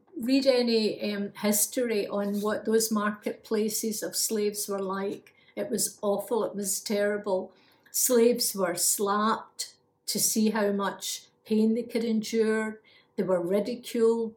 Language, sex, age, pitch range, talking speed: English, female, 50-69, 200-230 Hz, 135 wpm